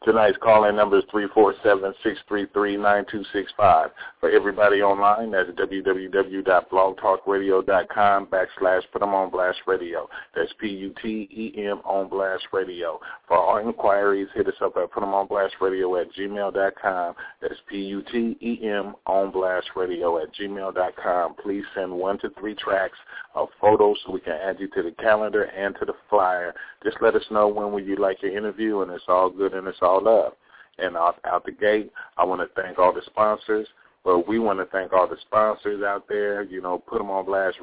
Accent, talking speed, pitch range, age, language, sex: American, 155 wpm, 95-105 Hz, 40-59, English, male